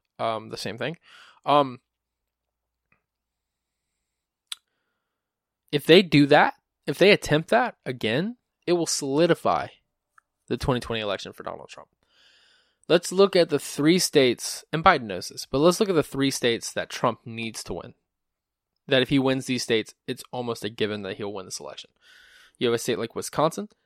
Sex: male